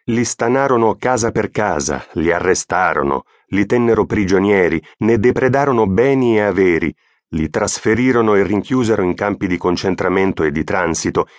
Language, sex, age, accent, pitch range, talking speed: Italian, male, 30-49, native, 95-120 Hz, 135 wpm